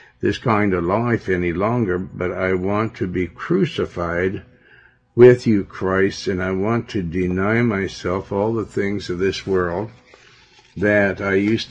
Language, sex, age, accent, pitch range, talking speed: English, male, 60-79, American, 90-115 Hz, 155 wpm